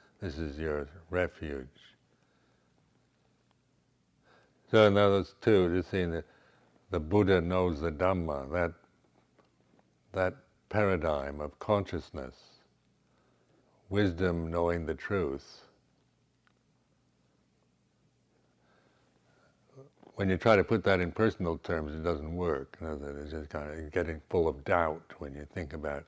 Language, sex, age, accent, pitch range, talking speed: English, male, 60-79, American, 75-90 Hz, 120 wpm